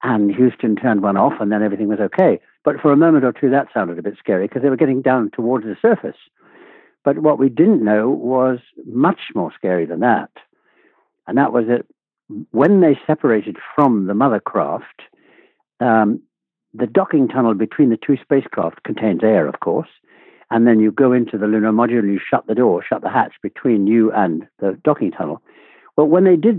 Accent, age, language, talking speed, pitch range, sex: British, 60-79, English, 200 wpm, 120-160 Hz, male